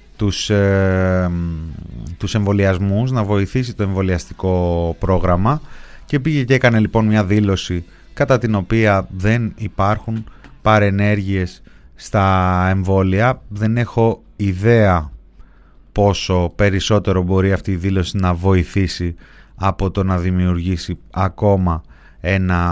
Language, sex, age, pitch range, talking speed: Greek, male, 30-49, 90-110 Hz, 105 wpm